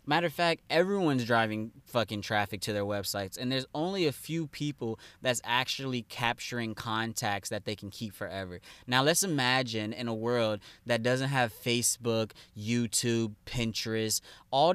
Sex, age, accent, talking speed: male, 20-39, American, 155 wpm